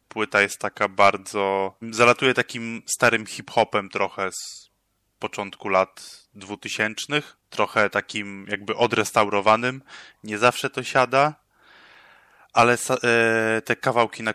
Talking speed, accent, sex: 105 wpm, native, male